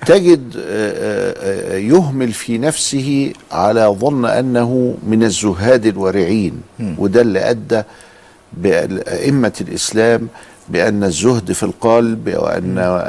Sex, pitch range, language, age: male, 105-165 Hz, Arabic, 50-69